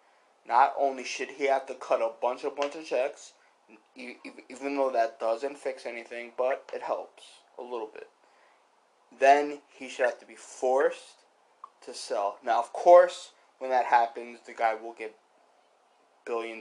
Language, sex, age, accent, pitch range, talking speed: English, male, 20-39, American, 115-160 Hz, 165 wpm